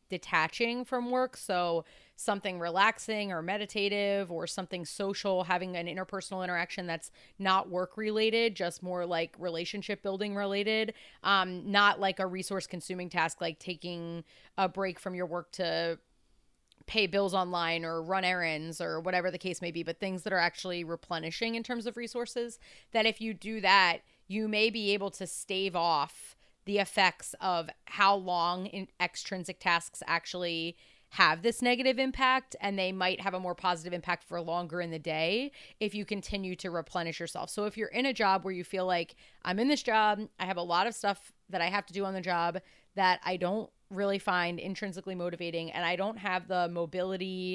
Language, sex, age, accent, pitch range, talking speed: English, female, 30-49, American, 175-205 Hz, 185 wpm